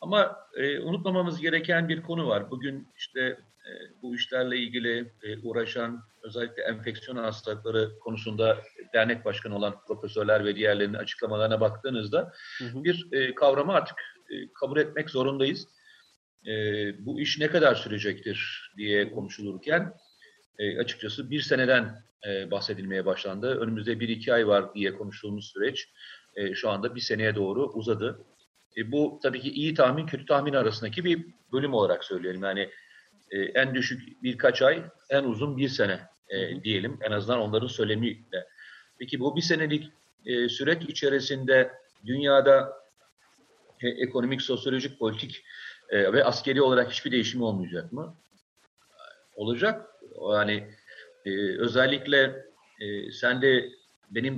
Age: 40-59